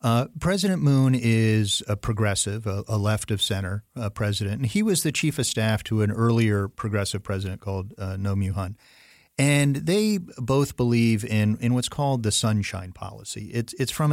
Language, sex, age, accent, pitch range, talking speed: English, male, 40-59, American, 100-120 Hz, 185 wpm